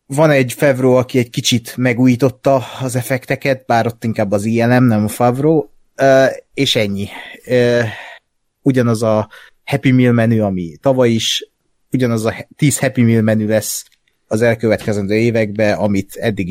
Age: 30-49